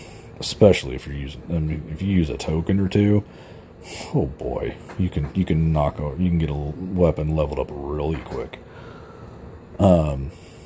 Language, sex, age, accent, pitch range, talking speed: English, male, 40-59, American, 80-95 Hz, 175 wpm